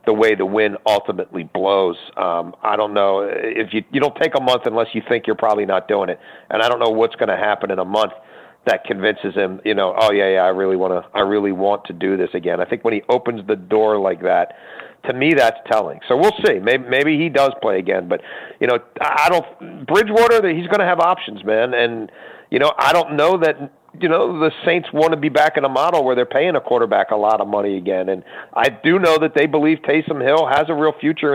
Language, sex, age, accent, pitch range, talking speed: English, male, 40-59, American, 110-160 Hz, 250 wpm